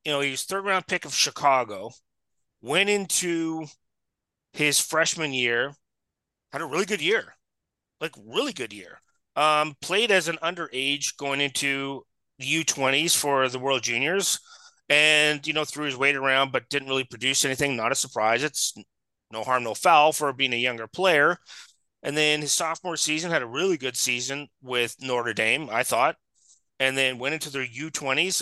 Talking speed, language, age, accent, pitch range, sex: 170 wpm, English, 30-49, American, 130-165 Hz, male